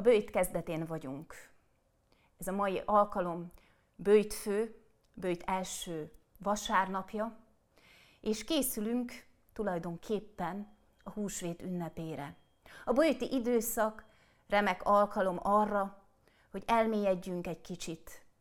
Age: 30-49